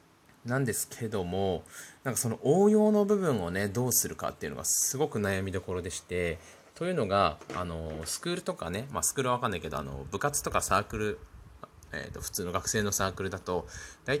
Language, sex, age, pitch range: Japanese, male, 20-39, 90-130 Hz